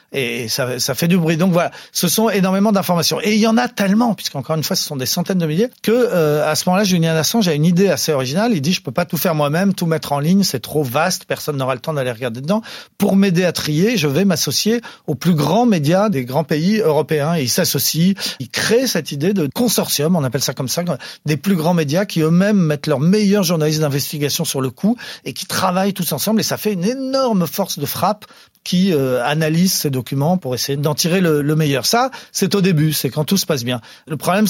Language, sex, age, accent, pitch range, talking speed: French, male, 40-59, French, 150-190 Hz, 245 wpm